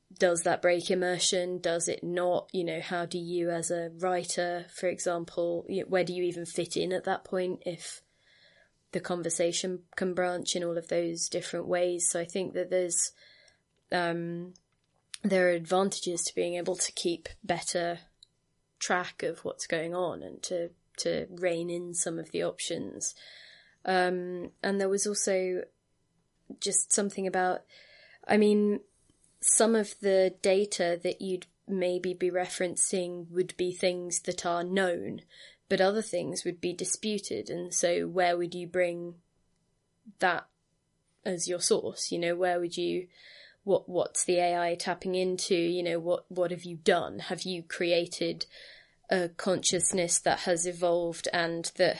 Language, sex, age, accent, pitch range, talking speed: English, female, 20-39, British, 175-185 Hz, 155 wpm